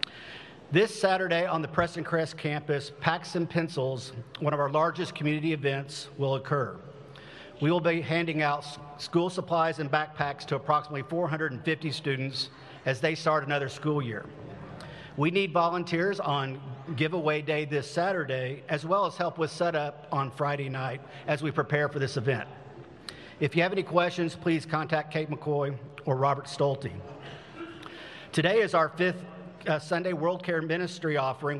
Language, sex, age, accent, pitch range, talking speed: English, male, 50-69, American, 145-165 Hz, 155 wpm